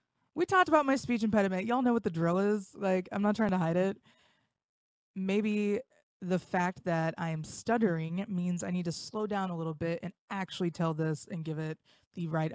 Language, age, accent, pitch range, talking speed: English, 20-39, American, 170-215 Hz, 210 wpm